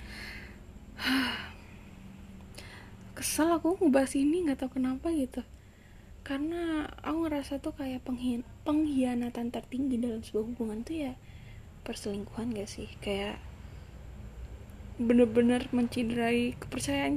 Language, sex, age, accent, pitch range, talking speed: Indonesian, female, 10-29, native, 215-280 Hz, 95 wpm